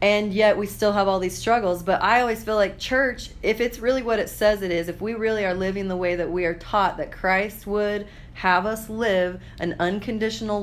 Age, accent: 30-49, American